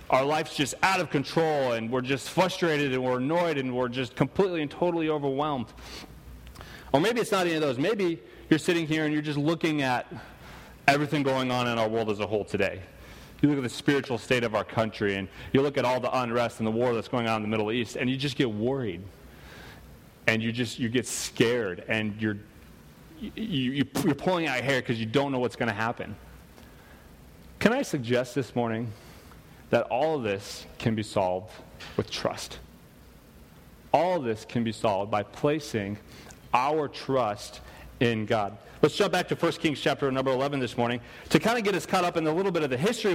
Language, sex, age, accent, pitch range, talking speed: English, male, 30-49, American, 120-165 Hz, 210 wpm